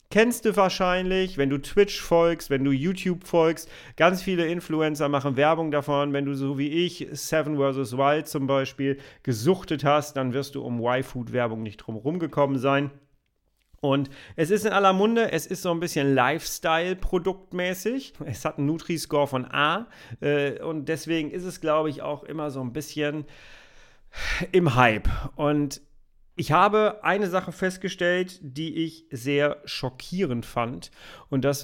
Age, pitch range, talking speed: 40-59, 125-160 Hz, 155 wpm